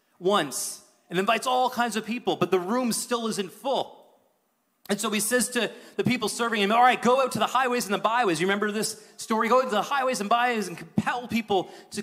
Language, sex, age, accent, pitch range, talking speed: English, male, 30-49, American, 195-250 Hz, 230 wpm